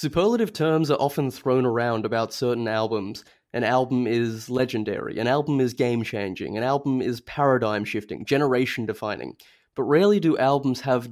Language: English